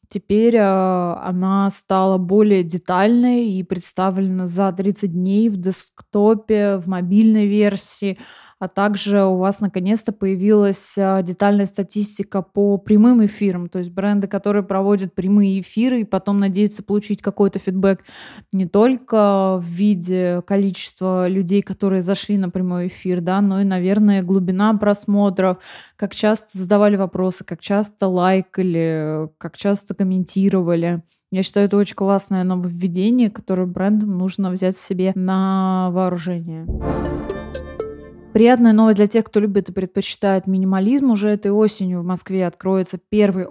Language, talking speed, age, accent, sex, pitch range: Russian, 130 wpm, 20-39, native, female, 185-205 Hz